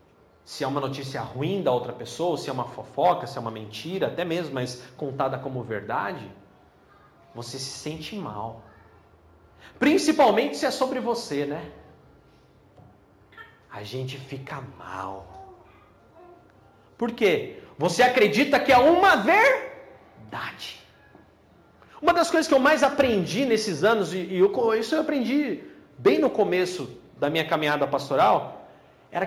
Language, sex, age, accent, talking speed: Portuguese, male, 40-59, Brazilian, 135 wpm